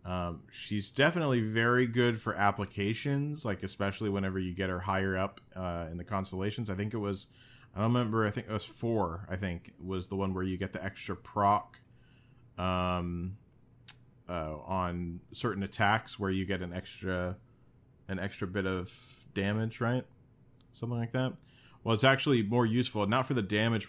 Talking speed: 175 wpm